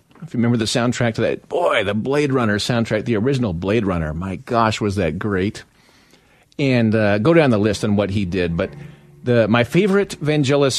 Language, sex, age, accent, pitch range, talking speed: English, male, 40-59, American, 110-140 Hz, 200 wpm